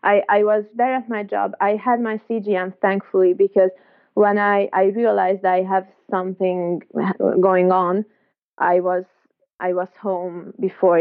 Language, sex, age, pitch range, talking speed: English, female, 20-39, 185-220 Hz, 155 wpm